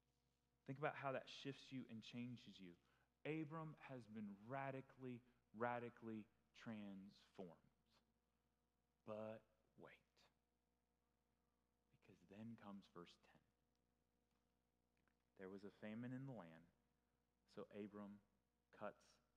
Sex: male